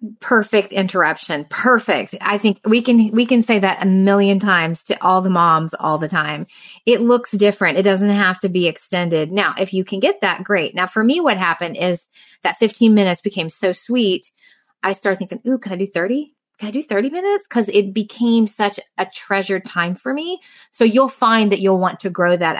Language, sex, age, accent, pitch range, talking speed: English, female, 20-39, American, 185-235 Hz, 210 wpm